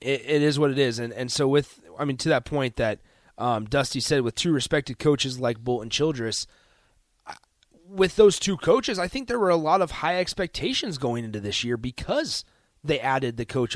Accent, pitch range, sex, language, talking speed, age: American, 115-155 Hz, male, English, 210 wpm, 30-49